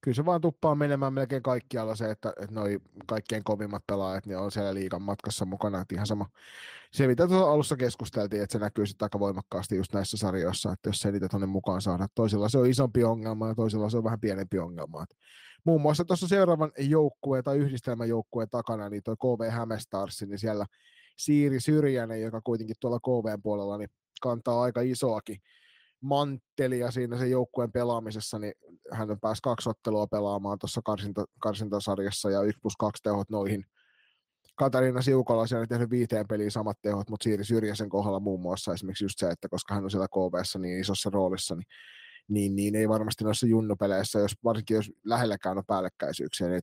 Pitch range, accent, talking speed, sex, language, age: 100-125 Hz, native, 185 wpm, male, Finnish, 30-49